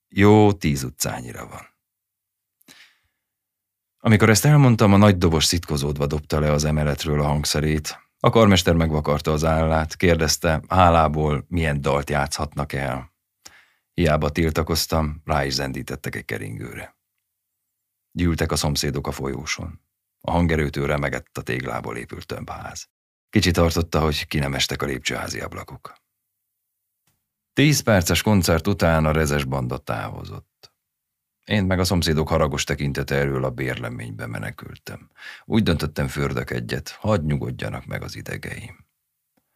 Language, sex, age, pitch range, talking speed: Hungarian, male, 30-49, 70-85 Hz, 125 wpm